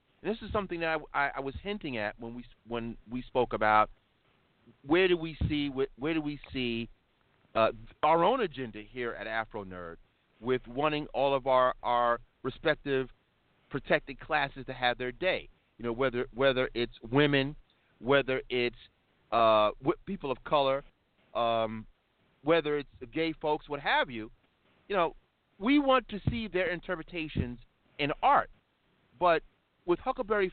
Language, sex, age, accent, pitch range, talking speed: English, male, 40-59, American, 120-175 Hz, 155 wpm